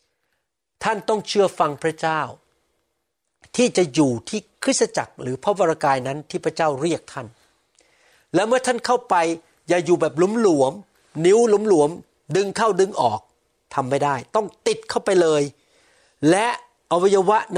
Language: Thai